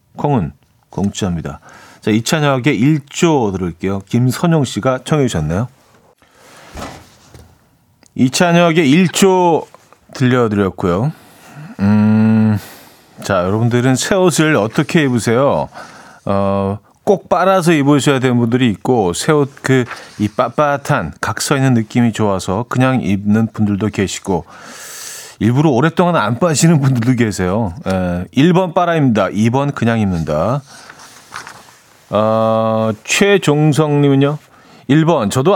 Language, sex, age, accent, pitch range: Korean, male, 40-59, native, 105-150 Hz